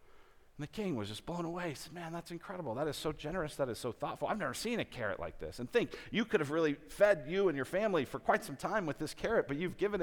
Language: English